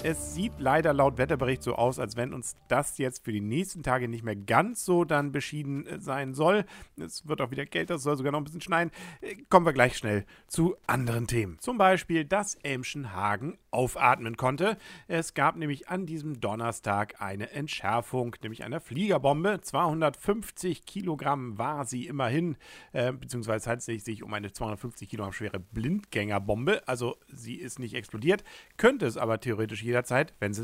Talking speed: 170 wpm